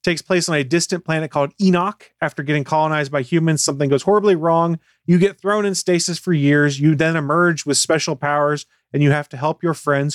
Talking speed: 220 wpm